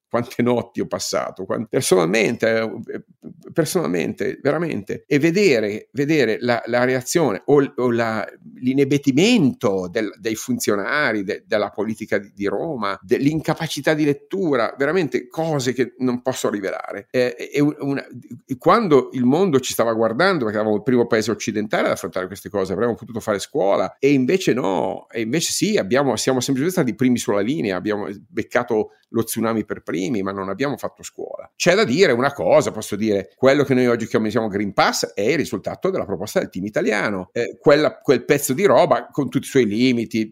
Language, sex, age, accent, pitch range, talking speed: Italian, male, 50-69, native, 110-130 Hz, 175 wpm